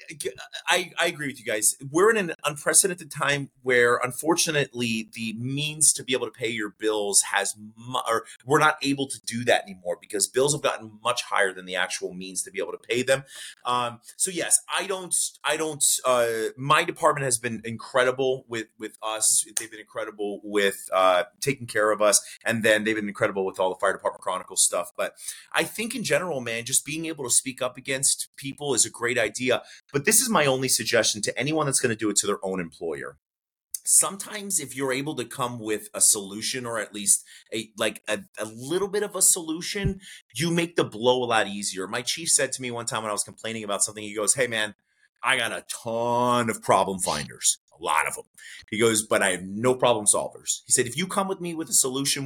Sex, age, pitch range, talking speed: male, 30-49, 110-150 Hz, 220 wpm